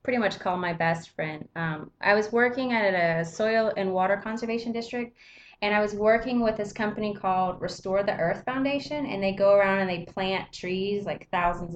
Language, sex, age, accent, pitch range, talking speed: English, female, 20-39, American, 170-220 Hz, 200 wpm